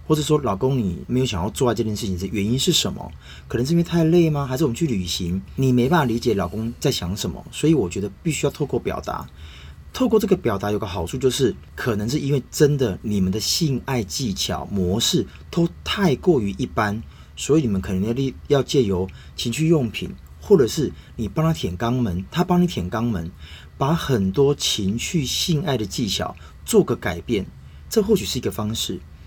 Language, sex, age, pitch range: Chinese, male, 30-49, 95-145 Hz